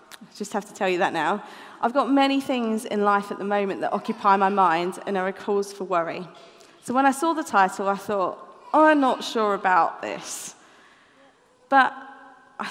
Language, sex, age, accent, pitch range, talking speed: English, female, 30-49, British, 195-245 Hz, 200 wpm